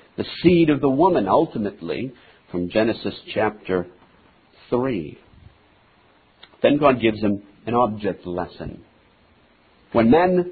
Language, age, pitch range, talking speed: English, 50-69, 110-155 Hz, 110 wpm